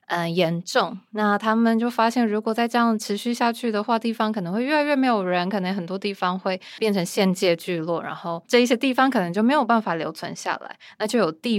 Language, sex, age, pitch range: Chinese, female, 20-39, 180-225 Hz